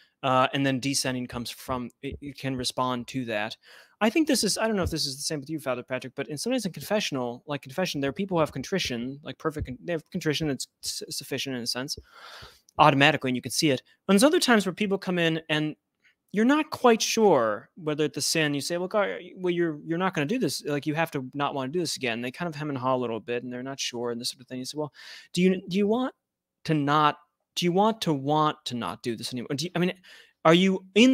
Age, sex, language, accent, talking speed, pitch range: 30-49, male, English, American, 270 wpm, 130-175 Hz